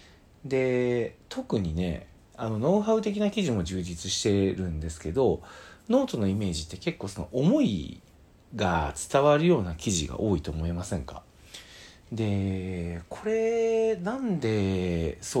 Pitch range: 85-145 Hz